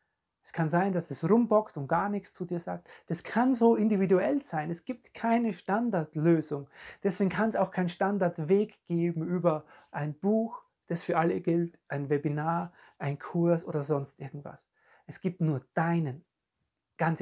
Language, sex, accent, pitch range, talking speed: German, male, German, 160-205 Hz, 165 wpm